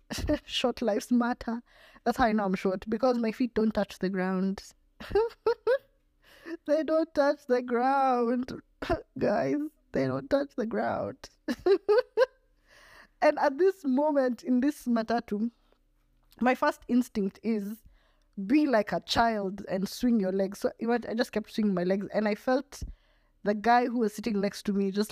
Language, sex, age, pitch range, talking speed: English, female, 20-39, 185-265 Hz, 155 wpm